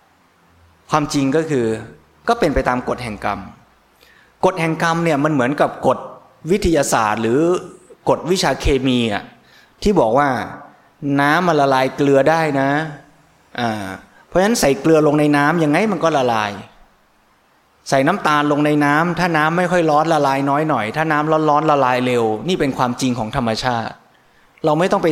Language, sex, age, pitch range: Thai, male, 20-39, 120-155 Hz